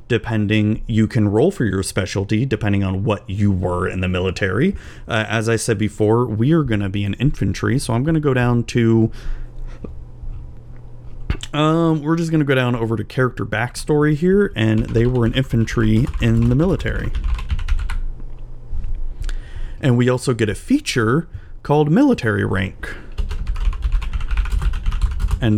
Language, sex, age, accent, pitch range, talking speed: English, male, 30-49, American, 100-125 Hz, 155 wpm